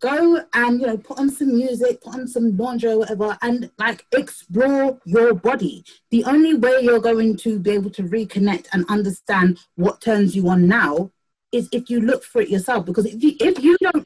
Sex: female